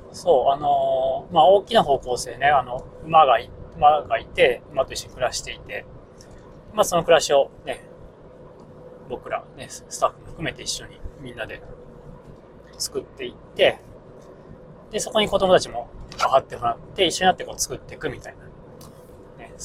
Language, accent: Japanese, native